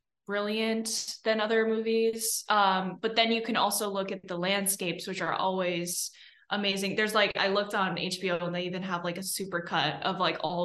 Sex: female